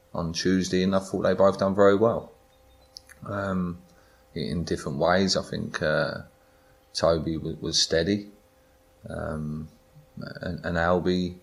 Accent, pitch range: British, 85-95 Hz